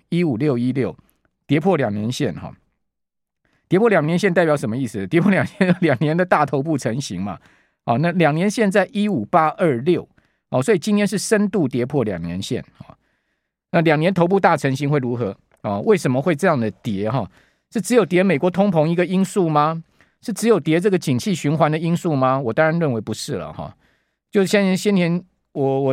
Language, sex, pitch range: Chinese, male, 130-180 Hz